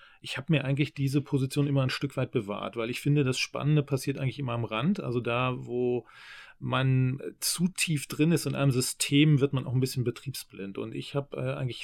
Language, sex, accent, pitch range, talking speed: German, male, German, 125-140 Hz, 215 wpm